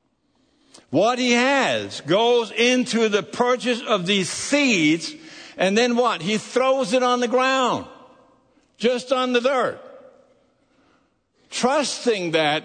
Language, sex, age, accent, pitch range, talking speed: English, male, 60-79, American, 160-255 Hz, 120 wpm